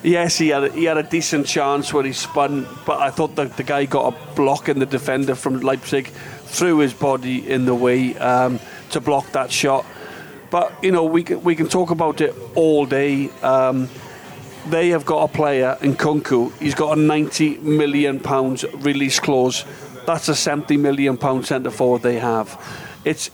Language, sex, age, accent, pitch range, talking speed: English, male, 40-59, British, 135-165 Hz, 190 wpm